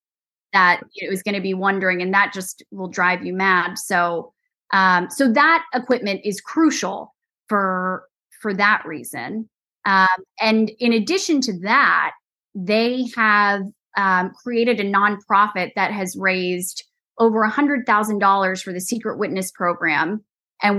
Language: English